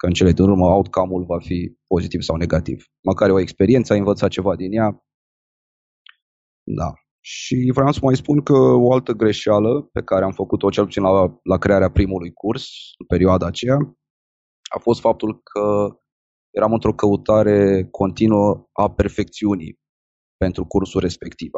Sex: male